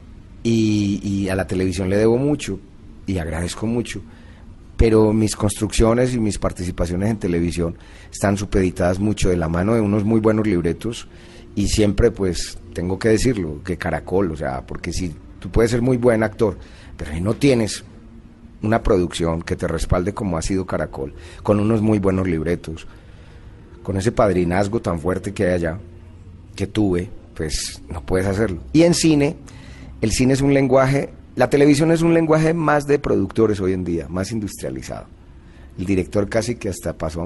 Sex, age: male, 30-49